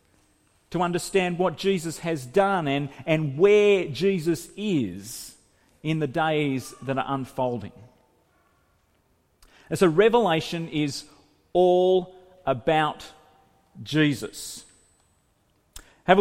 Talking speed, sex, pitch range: 95 wpm, male, 110-160 Hz